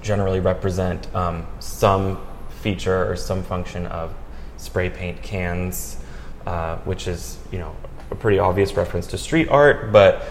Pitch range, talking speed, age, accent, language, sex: 95-120 Hz, 145 wpm, 20-39, American, English, male